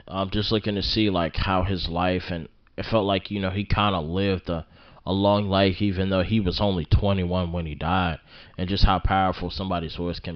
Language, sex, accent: English, male, American